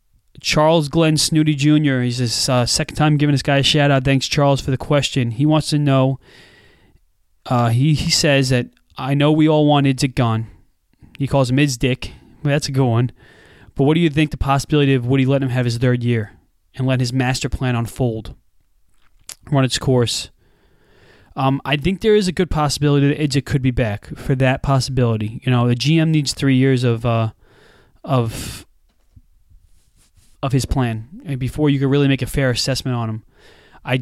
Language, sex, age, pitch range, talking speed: English, male, 20-39, 120-150 Hz, 190 wpm